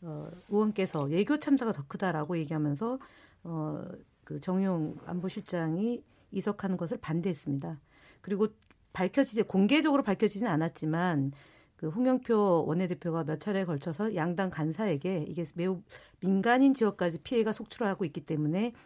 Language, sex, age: Korean, female, 50-69